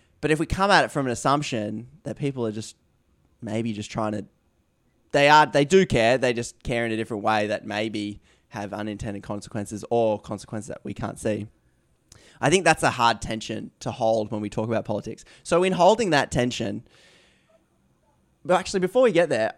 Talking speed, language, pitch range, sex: 195 wpm, English, 110-145 Hz, male